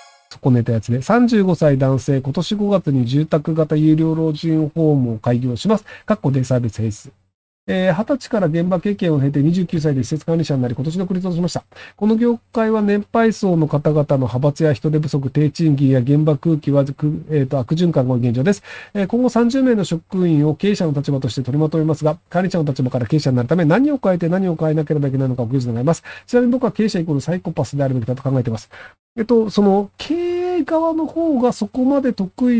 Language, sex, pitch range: Japanese, male, 140-205 Hz